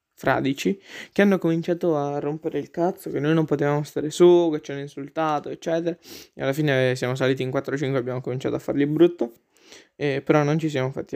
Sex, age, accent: male, 20-39, native